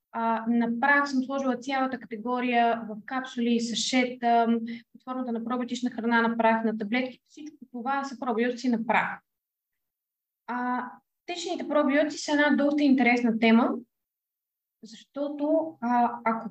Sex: female